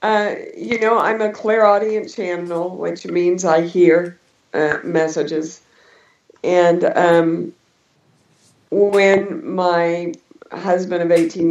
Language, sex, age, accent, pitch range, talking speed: English, female, 50-69, American, 155-175 Hz, 110 wpm